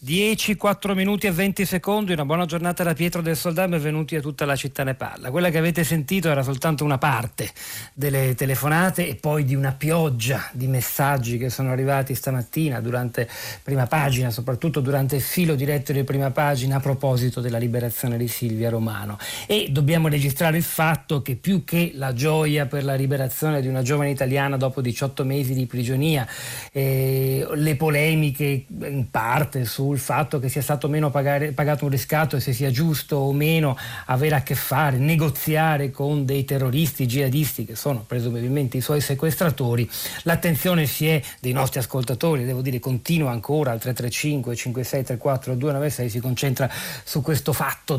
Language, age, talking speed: Italian, 40-59, 170 wpm